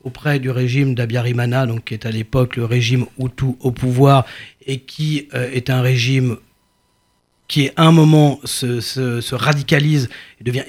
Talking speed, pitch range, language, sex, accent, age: 170 wpm, 125-155 Hz, French, male, French, 40-59